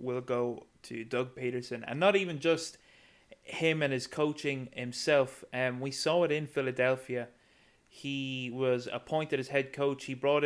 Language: English